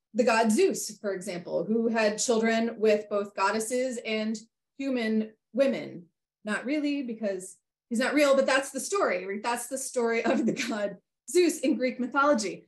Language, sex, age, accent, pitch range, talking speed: English, female, 20-39, American, 210-275 Hz, 160 wpm